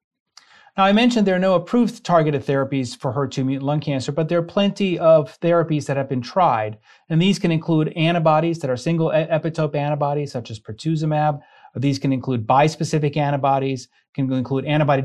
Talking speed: 180 wpm